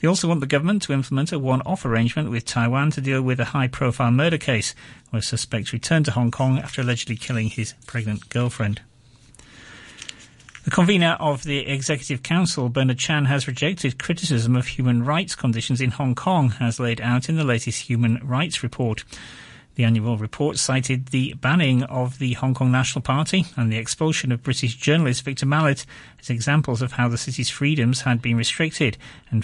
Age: 40-59